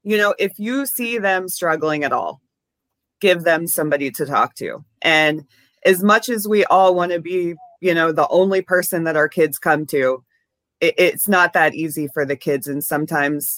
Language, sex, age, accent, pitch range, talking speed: English, female, 30-49, American, 165-210 Hz, 190 wpm